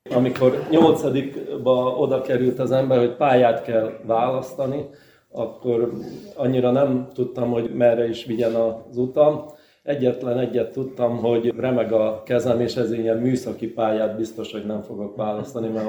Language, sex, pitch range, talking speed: Hungarian, male, 105-120 Hz, 145 wpm